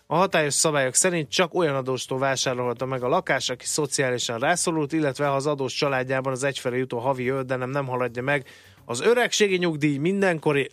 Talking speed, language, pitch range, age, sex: 185 wpm, Hungarian, 120-160 Hz, 30-49, male